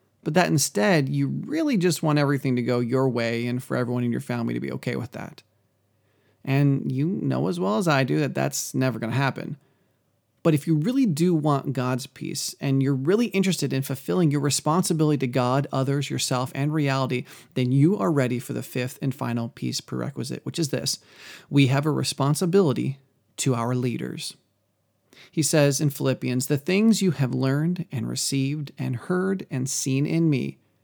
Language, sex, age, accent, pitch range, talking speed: English, male, 30-49, American, 125-160 Hz, 190 wpm